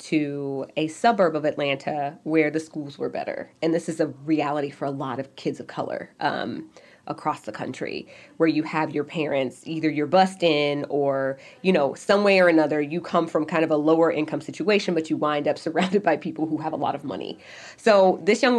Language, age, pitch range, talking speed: English, 20-39, 150-180 Hz, 215 wpm